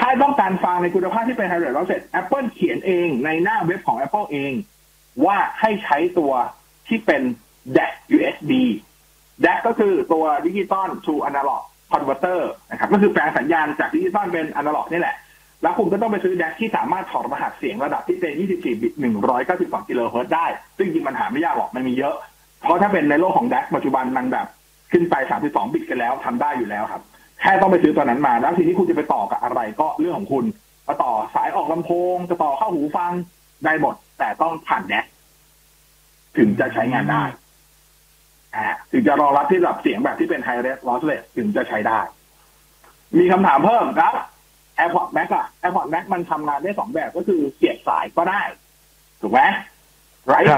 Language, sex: Thai, male